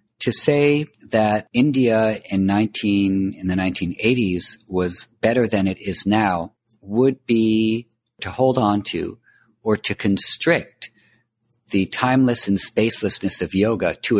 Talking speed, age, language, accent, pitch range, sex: 130 wpm, 50-69, English, American, 95-120 Hz, male